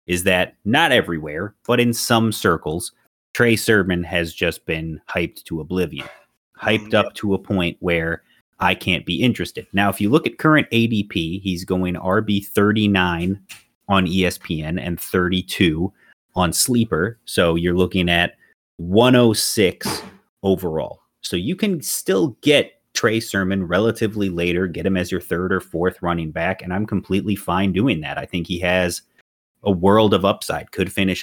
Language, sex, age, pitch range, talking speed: English, male, 30-49, 90-105 Hz, 160 wpm